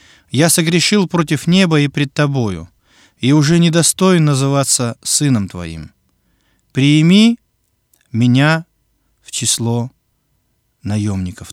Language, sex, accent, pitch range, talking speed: Russian, male, native, 105-170 Hz, 100 wpm